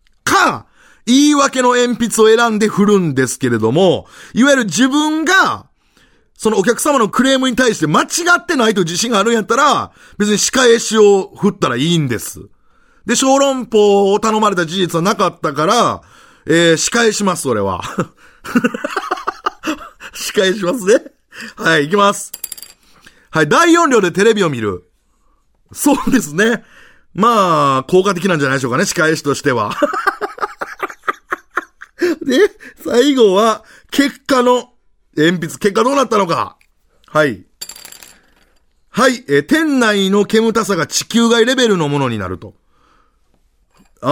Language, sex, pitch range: Japanese, male, 155-245 Hz